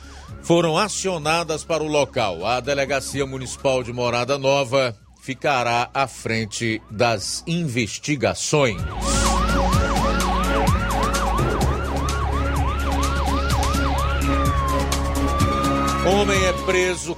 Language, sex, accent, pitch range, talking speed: Portuguese, male, Brazilian, 115-160 Hz, 65 wpm